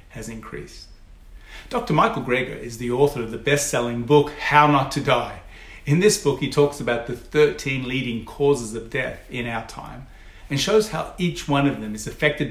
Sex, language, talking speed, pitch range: male, English, 190 wpm, 115-145 Hz